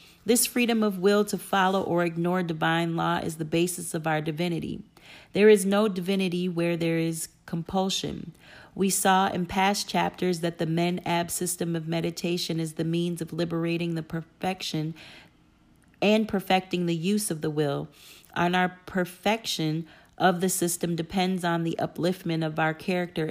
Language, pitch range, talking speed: English, 165-190 Hz, 160 wpm